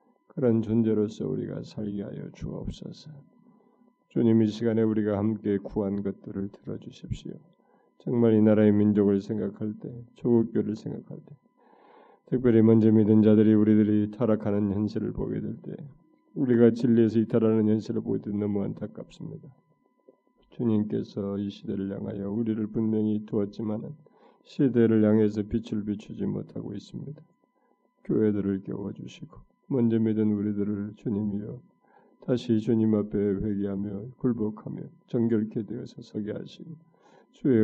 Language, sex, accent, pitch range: Korean, male, native, 105-120 Hz